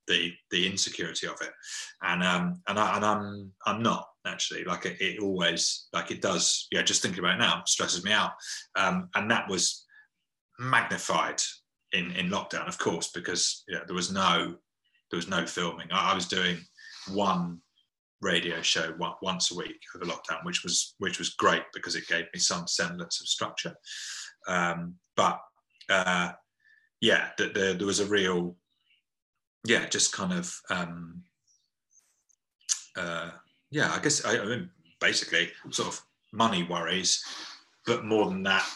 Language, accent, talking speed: English, British, 165 wpm